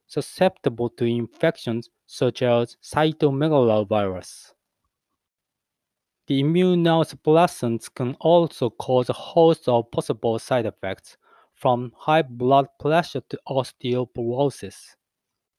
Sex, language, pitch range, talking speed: male, English, 115-150 Hz, 90 wpm